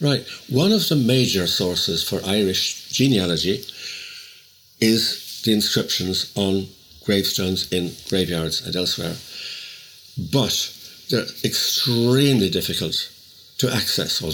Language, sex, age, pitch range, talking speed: English, male, 60-79, 95-130 Hz, 105 wpm